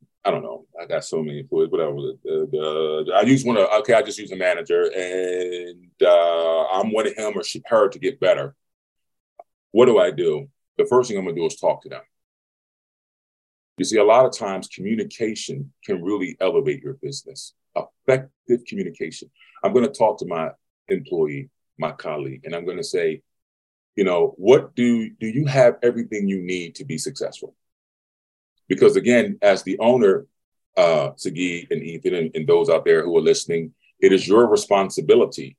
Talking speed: 180 wpm